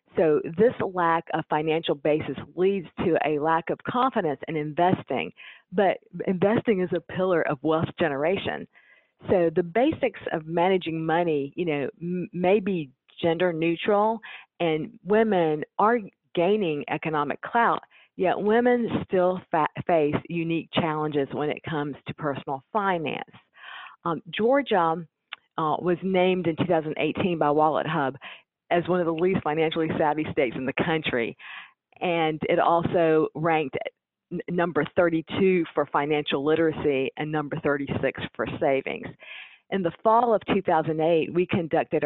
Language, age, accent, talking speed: English, 50-69, American, 135 wpm